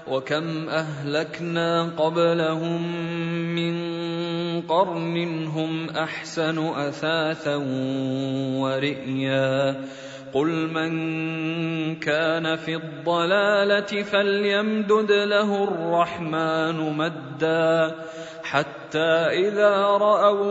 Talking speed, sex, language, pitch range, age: 60 wpm, male, Arabic, 150-170 Hz, 30-49